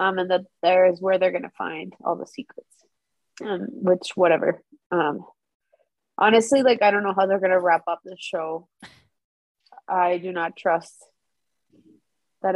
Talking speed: 165 wpm